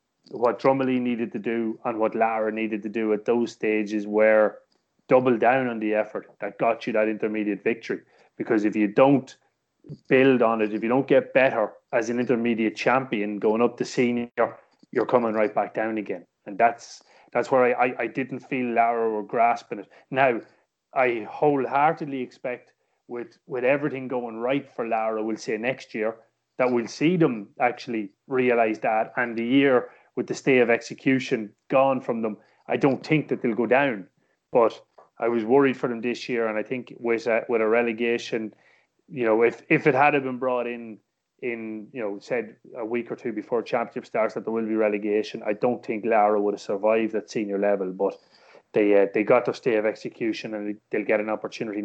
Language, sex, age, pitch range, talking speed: English, male, 30-49, 110-125 Hz, 200 wpm